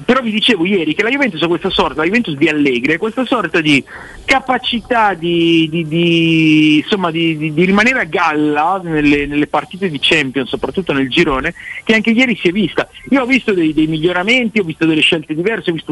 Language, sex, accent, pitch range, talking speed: Italian, male, native, 125-175 Hz, 210 wpm